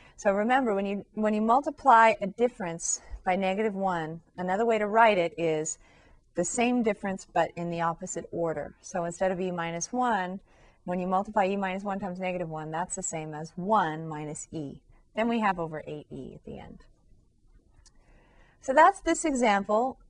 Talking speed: 180 wpm